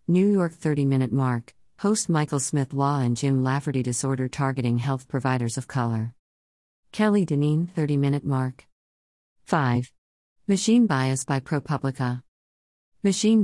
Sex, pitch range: female, 125-160 Hz